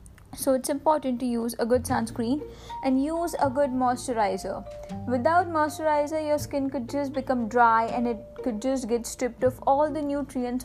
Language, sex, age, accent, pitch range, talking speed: English, female, 10-29, Indian, 240-300 Hz, 175 wpm